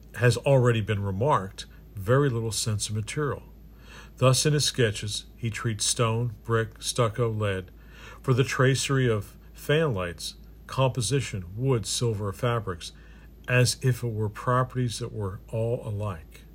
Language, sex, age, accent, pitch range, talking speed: English, male, 50-69, American, 100-125 Hz, 140 wpm